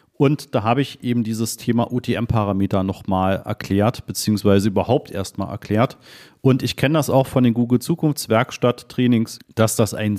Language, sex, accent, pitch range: German, male, German, 110-140 Hz